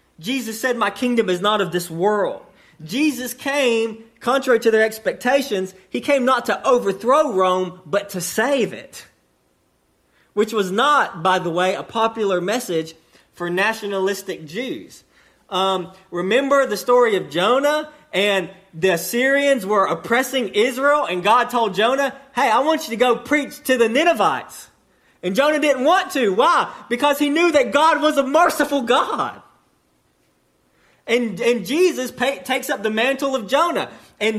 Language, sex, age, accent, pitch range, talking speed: English, male, 30-49, American, 195-275 Hz, 155 wpm